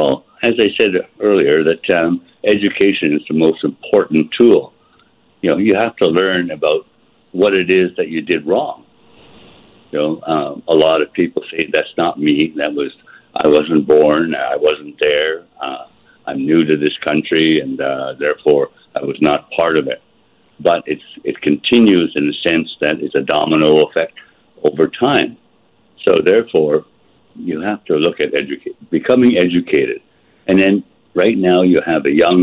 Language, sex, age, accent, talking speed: English, male, 60-79, American, 170 wpm